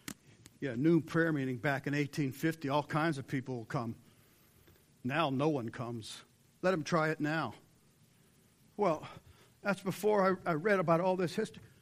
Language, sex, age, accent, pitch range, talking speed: English, male, 60-79, American, 125-170 Hz, 160 wpm